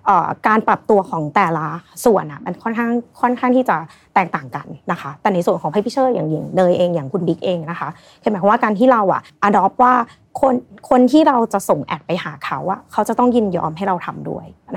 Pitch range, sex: 175-240 Hz, female